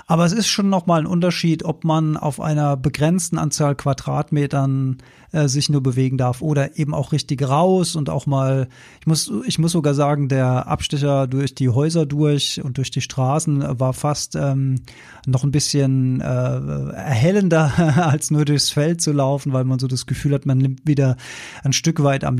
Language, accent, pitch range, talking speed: German, German, 135-165 Hz, 190 wpm